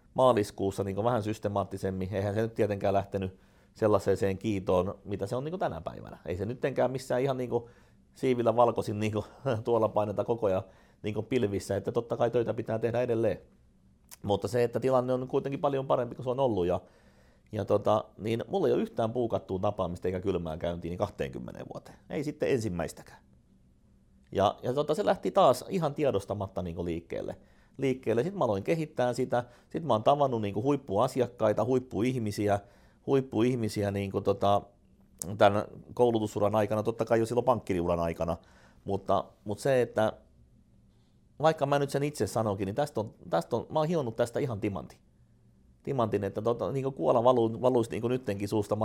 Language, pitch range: Finnish, 95-125 Hz